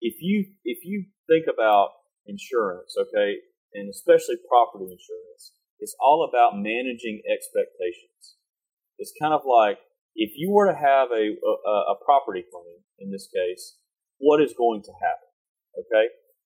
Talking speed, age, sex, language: 145 wpm, 30-49, male, English